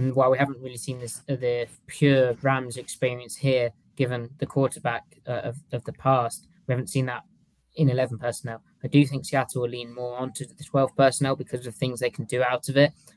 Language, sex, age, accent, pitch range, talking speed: English, male, 20-39, British, 125-150 Hz, 210 wpm